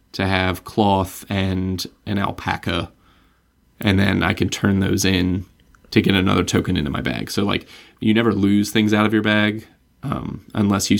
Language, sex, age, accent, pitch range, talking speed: English, male, 20-39, American, 95-105 Hz, 180 wpm